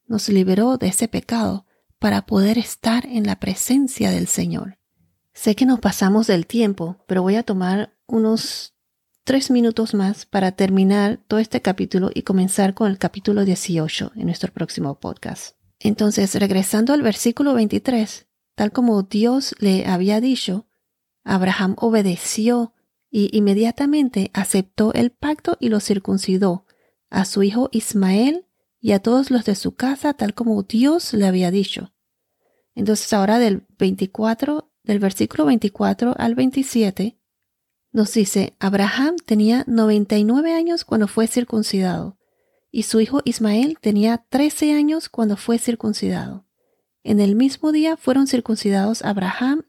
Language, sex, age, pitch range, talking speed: Spanish, female, 40-59, 200-245 Hz, 140 wpm